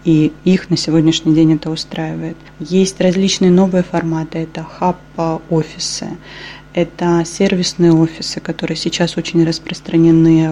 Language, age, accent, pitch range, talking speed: Russian, 20-39, native, 160-175 Hz, 115 wpm